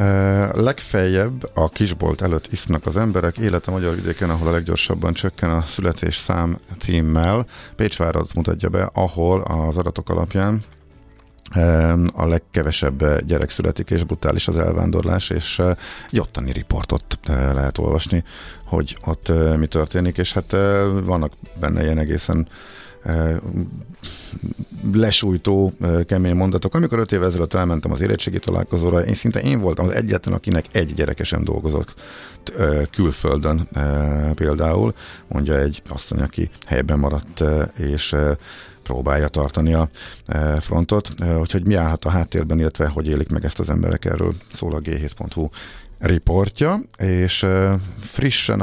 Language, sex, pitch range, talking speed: Hungarian, male, 80-100 Hz, 125 wpm